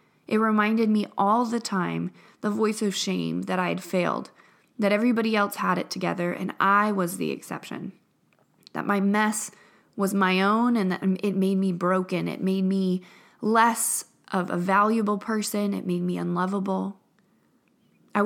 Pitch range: 180-215 Hz